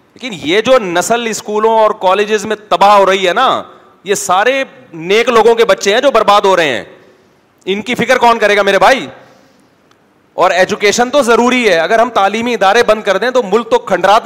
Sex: male